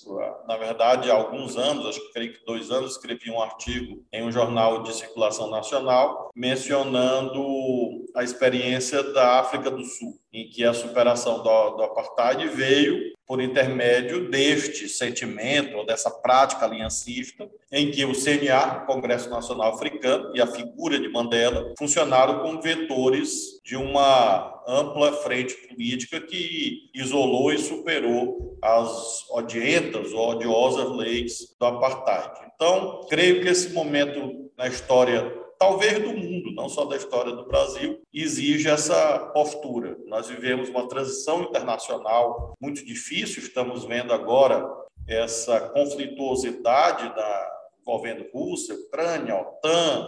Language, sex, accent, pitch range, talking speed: Portuguese, male, Brazilian, 120-175 Hz, 125 wpm